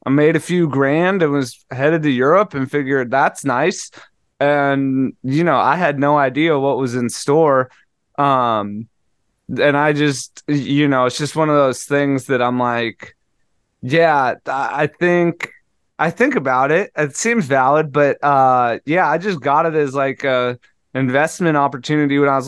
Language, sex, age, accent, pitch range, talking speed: English, male, 20-39, American, 130-160 Hz, 175 wpm